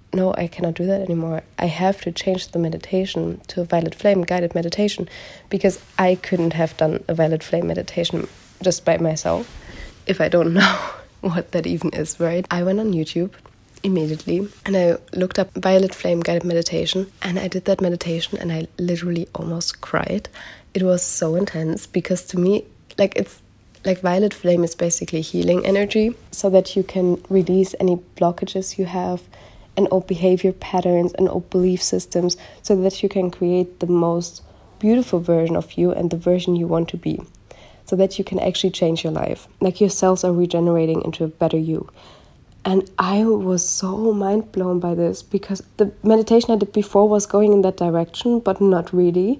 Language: English